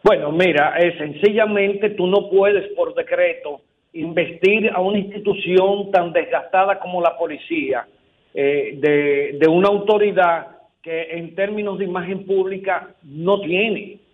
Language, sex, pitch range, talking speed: Spanish, male, 170-205 Hz, 130 wpm